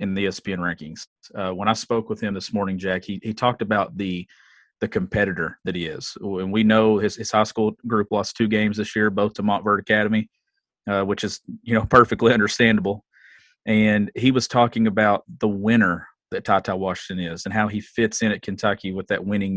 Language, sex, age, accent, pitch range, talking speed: English, male, 40-59, American, 95-115 Hz, 210 wpm